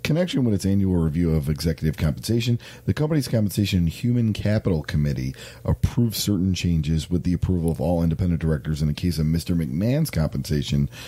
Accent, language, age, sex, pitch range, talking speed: American, English, 40-59, male, 80-105 Hz, 170 wpm